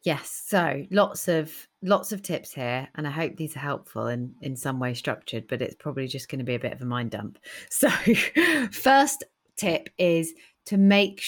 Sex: female